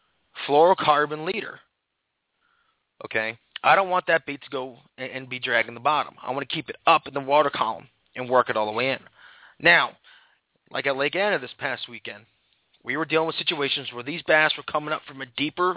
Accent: American